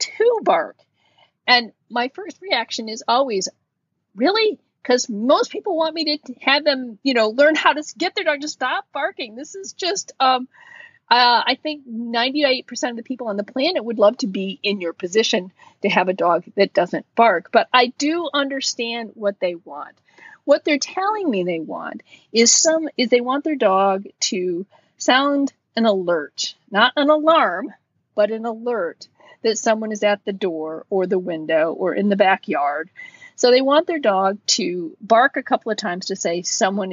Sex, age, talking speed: female, 40-59, 185 wpm